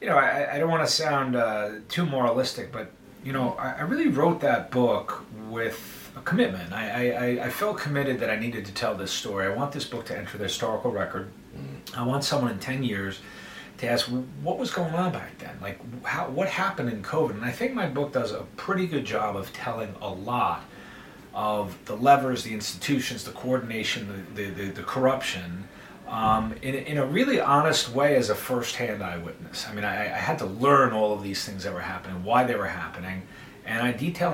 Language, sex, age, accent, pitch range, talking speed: English, male, 30-49, American, 105-140 Hz, 215 wpm